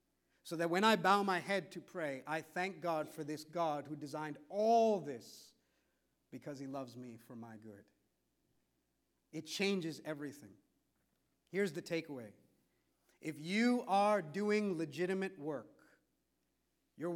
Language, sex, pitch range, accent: English, male, 145-190 Hz, American